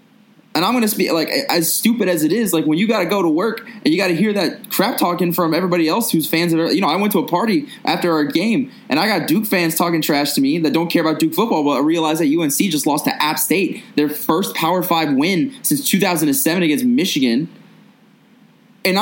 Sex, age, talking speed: male, 20-39, 250 wpm